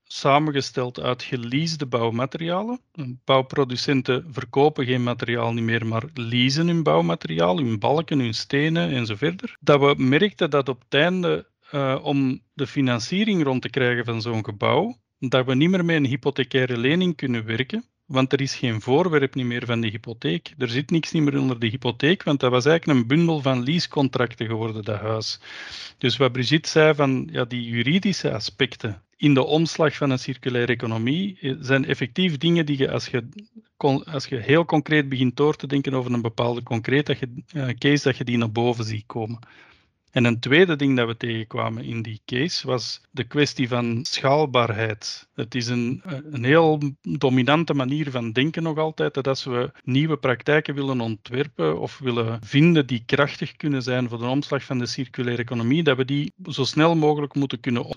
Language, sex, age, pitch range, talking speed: Dutch, male, 40-59, 120-150 Hz, 175 wpm